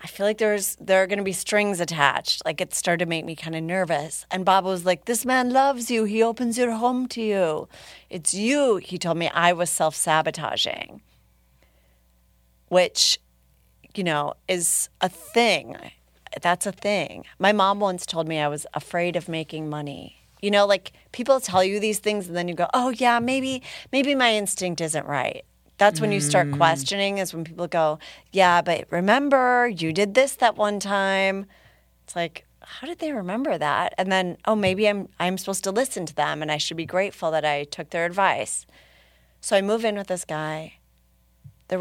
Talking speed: 195 wpm